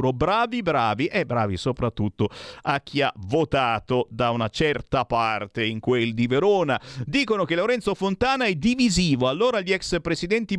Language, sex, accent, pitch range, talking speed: Italian, male, native, 115-180 Hz, 155 wpm